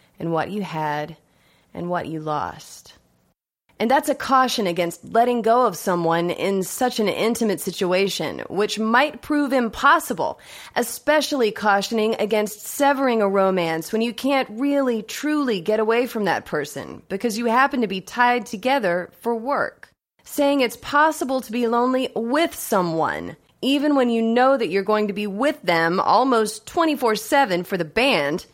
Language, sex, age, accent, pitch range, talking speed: English, female, 30-49, American, 180-245 Hz, 160 wpm